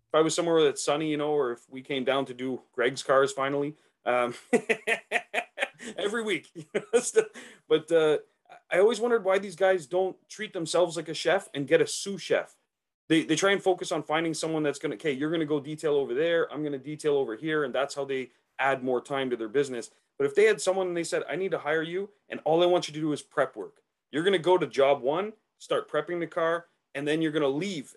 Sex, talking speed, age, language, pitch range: male, 245 wpm, 30-49, English, 140-200 Hz